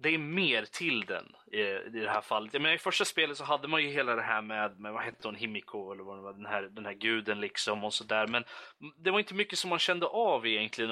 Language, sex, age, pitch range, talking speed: Swedish, male, 20-39, 105-145 Hz, 275 wpm